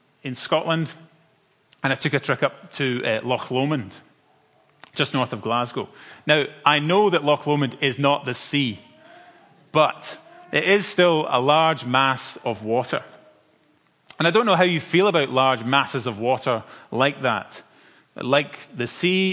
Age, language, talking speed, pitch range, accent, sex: 30-49, English, 160 wpm, 125-165 Hz, British, male